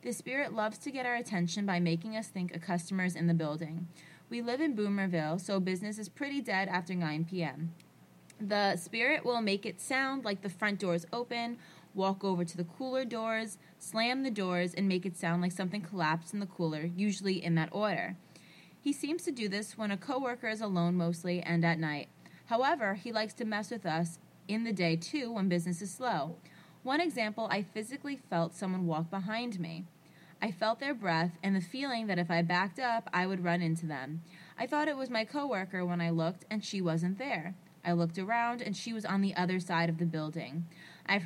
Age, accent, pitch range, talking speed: 20-39, American, 175-220 Hz, 210 wpm